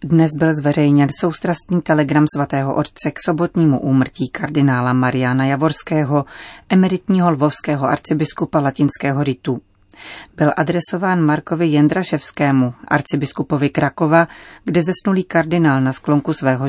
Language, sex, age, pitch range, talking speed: Czech, female, 30-49, 135-165 Hz, 110 wpm